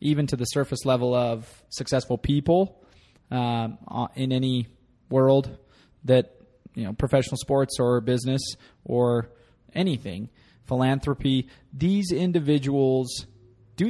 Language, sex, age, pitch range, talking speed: English, male, 20-39, 115-135 Hz, 110 wpm